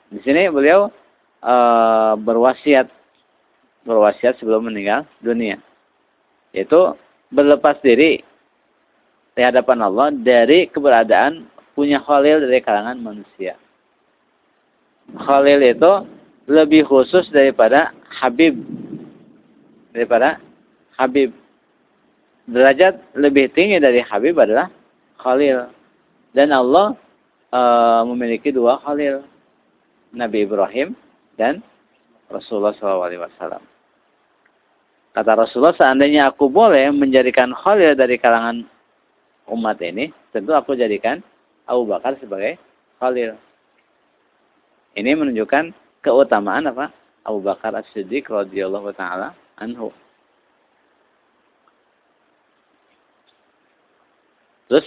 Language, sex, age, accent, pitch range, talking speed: Indonesian, male, 50-69, native, 115-140 Hz, 85 wpm